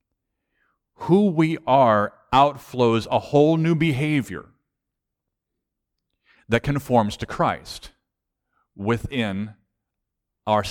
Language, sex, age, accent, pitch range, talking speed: English, male, 40-59, American, 100-135 Hz, 80 wpm